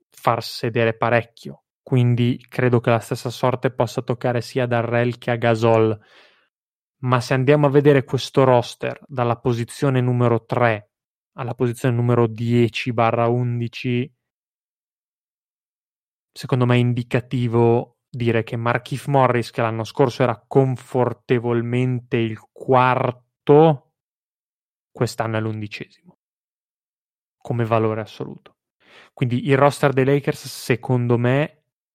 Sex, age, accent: male, 20-39, native